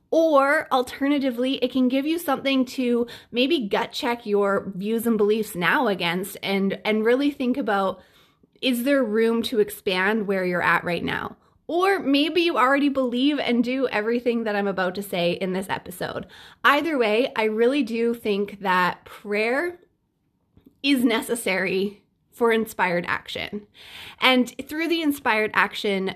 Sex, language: female, English